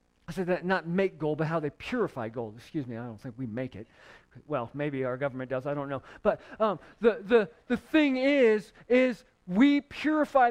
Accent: American